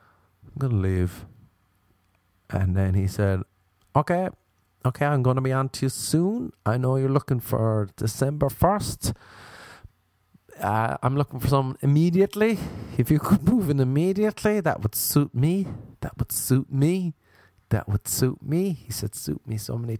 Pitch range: 100-140 Hz